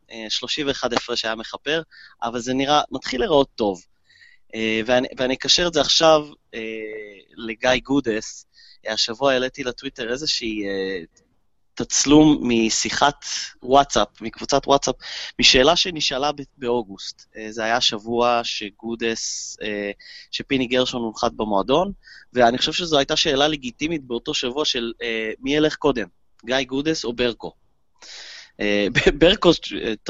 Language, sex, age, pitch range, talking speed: Hebrew, male, 20-39, 110-145 Hz, 130 wpm